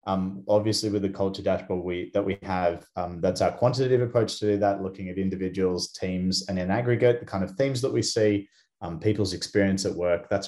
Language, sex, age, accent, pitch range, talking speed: English, male, 20-39, Australian, 90-100 Hz, 210 wpm